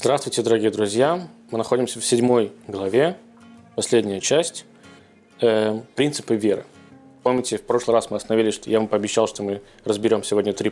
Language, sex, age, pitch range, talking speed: Russian, male, 20-39, 110-150 Hz, 155 wpm